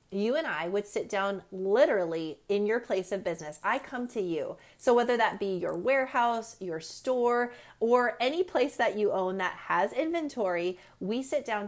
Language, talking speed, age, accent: English, 185 wpm, 30-49, American